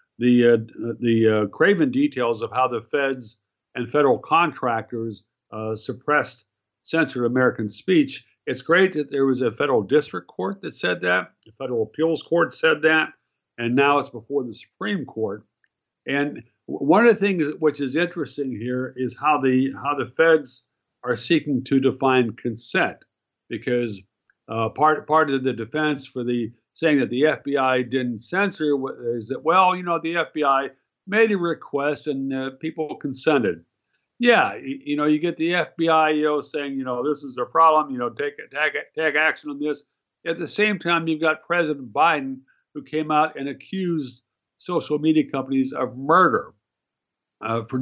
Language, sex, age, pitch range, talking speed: English, male, 60-79, 120-155 Hz, 165 wpm